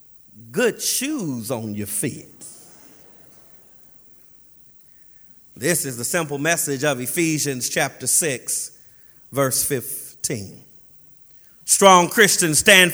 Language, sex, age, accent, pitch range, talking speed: English, male, 40-59, American, 155-220 Hz, 90 wpm